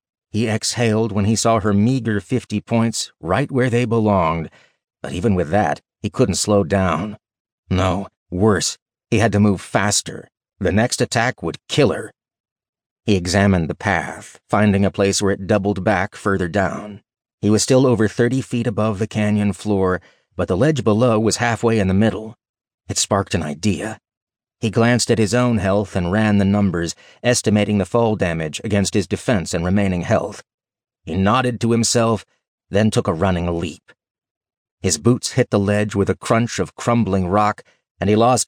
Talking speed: 175 wpm